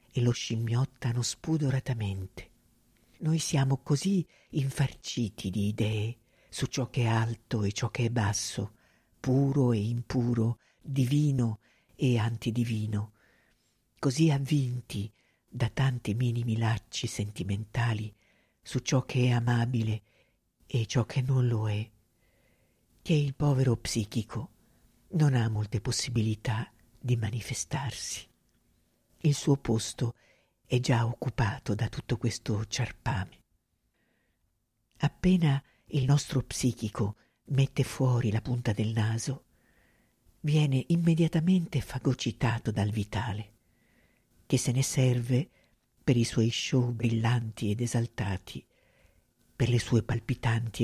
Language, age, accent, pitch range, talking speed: Italian, 50-69, native, 110-130 Hz, 110 wpm